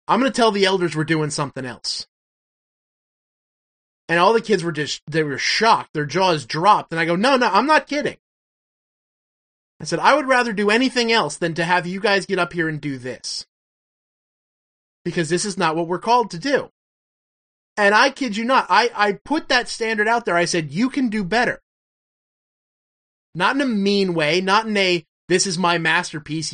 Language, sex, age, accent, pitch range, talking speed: English, male, 20-39, American, 160-205 Hz, 200 wpm